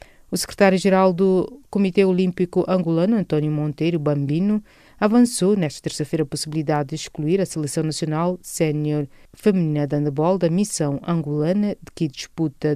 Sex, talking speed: female, 130 wpm